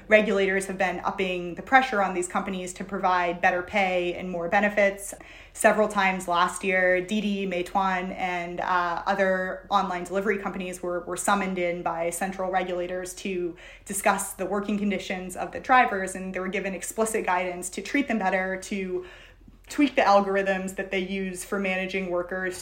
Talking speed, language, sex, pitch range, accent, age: 165 wpm, English, female, 180-200 Hz, American, 20-39